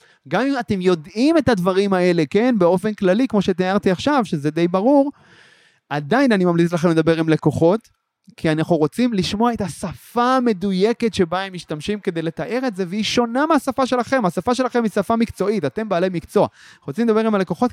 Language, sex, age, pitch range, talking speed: Hebrew, male, 30-49, 165-225 Hz, 180 wpm